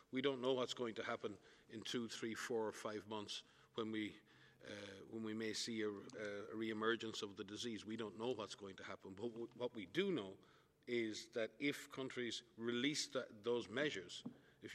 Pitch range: 110-125 Hz